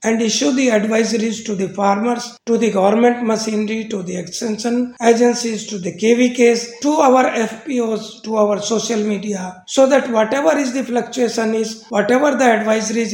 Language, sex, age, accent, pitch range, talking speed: English, male, 60-79, Indian, 210-245 Hz, 160 wpm